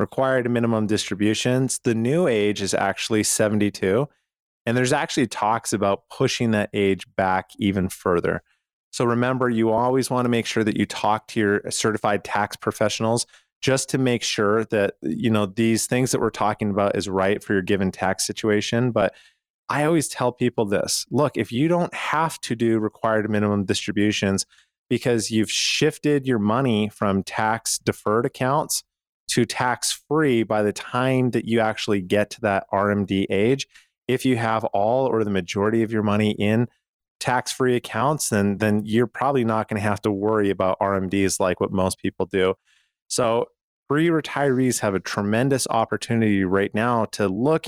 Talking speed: 170 wpm